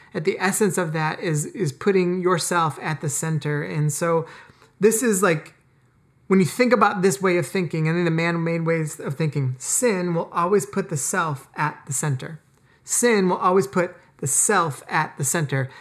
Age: 30-49